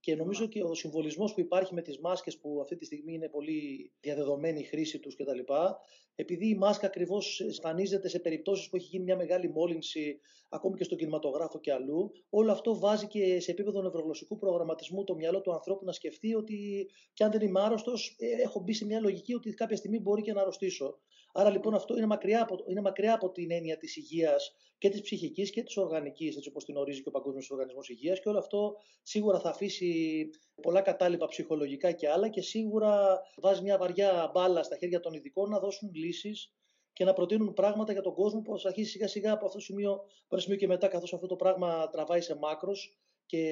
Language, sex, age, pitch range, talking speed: Greek, male, 30-49, 165-205 Hz, 205 wpm